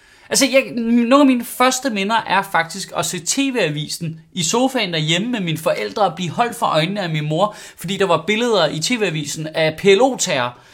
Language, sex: Danish, male